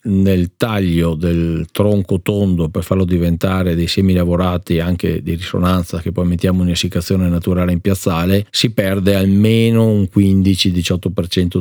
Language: Italian